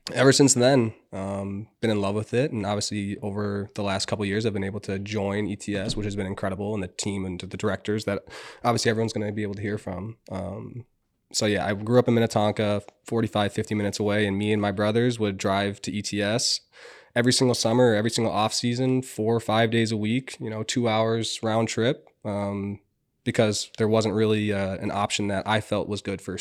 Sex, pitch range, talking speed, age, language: male, 100-115 Hz, 220 wpm, 20-39, English